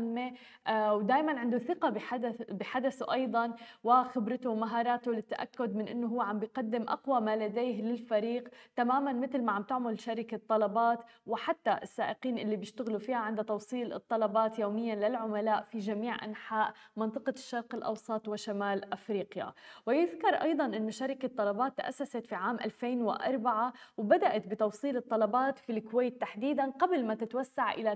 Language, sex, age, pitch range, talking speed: Arabic, female, 20-39, 220-255 Hz, 135 wpm